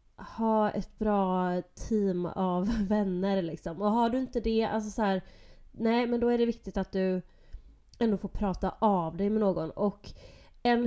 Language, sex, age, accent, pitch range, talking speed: Swedish, female, 20-39, native, 185-220 Hz, 175 wpm